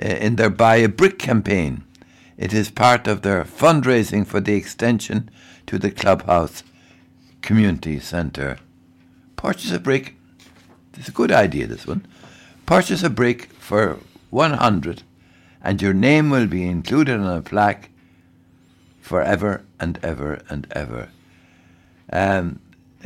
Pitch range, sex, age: 90-115 Hz, male, 60-79